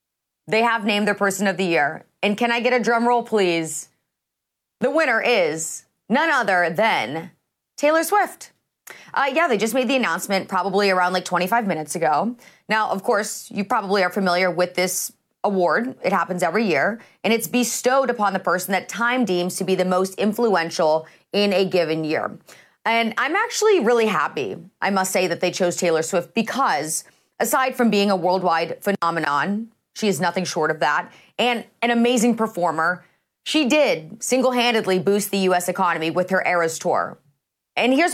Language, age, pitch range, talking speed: English, 30-49, 180-240 Hz, 175 wpm